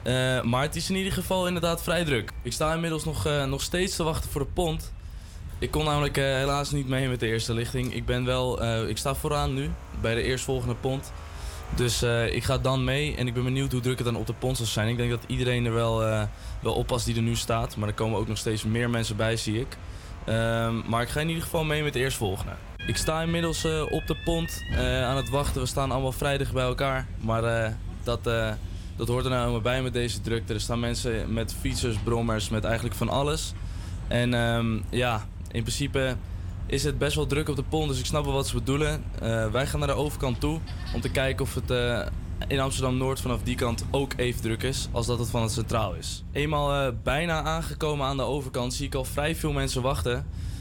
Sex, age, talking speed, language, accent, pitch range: male, 20-39, 240 wpm, Dutch, Dutch, 110-135 Hz